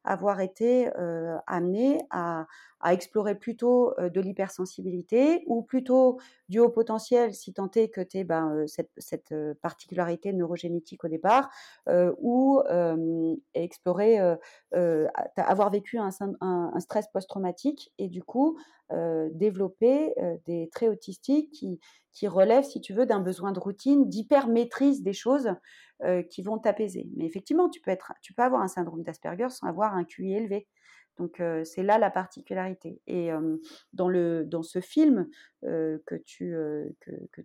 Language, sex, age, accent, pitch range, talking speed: French, female, 40-59, French, 175-250 Hz, 155 wpm